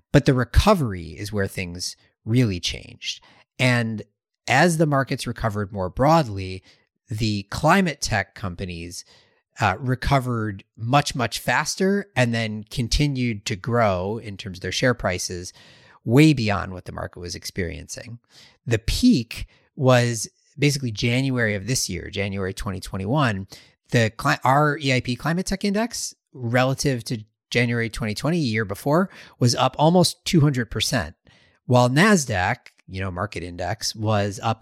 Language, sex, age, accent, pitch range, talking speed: English, male, 30-49, American, 100-130 Hz, 130 wpm